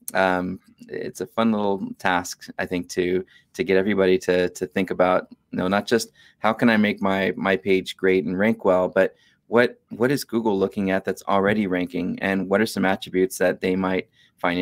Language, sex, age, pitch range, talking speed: English, male, 20-39, 95-105 Hz, 205 wpm